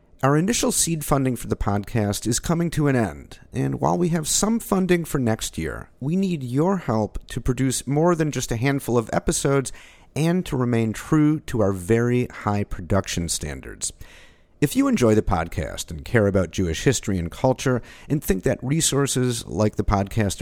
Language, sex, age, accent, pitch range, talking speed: English, male, 50-69, American, 95-140 Hz, 185 wpm